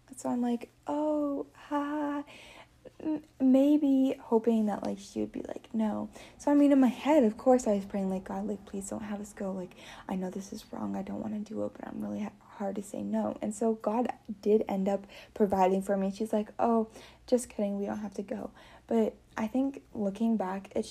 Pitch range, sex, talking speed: 195-235 Hz, female, 220 wpm